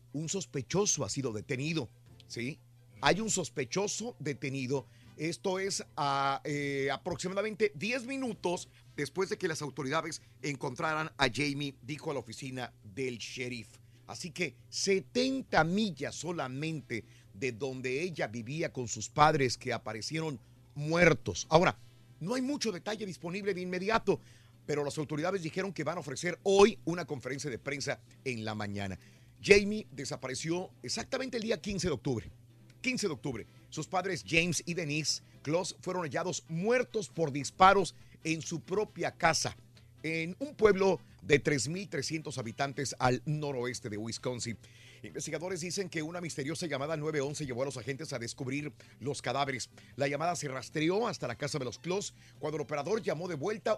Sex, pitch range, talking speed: male, 125-180 Hz, 150 wpm